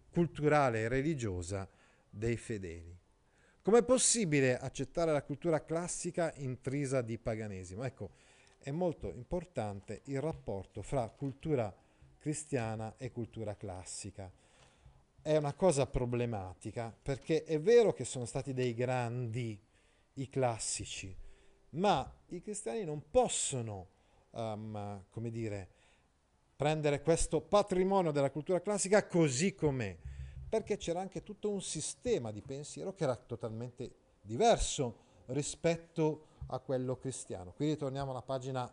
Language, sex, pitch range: Italian, male, 110-165 Hz